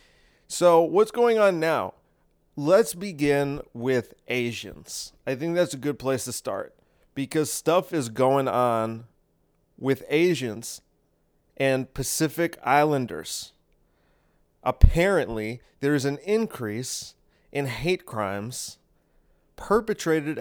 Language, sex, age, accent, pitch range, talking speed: English, male, 30-49, American, 120-160 Hz, 105 wpm